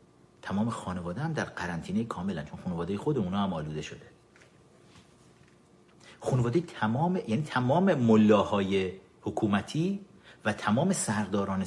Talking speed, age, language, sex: 115 wpm, 50-69, Persian, male